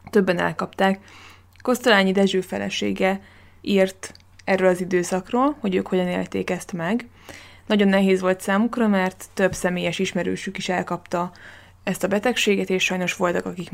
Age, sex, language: 20-39, female, Hungarian